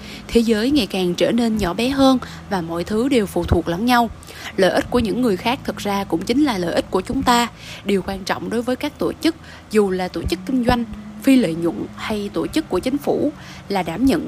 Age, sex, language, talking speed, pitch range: 20-39, female, Vietnamese, 250 wpm, 185-255 Hz